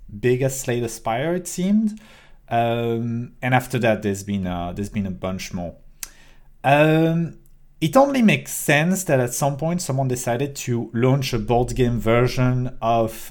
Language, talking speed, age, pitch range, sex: English, 160 wpm, 40-59, 110-140 Hz, male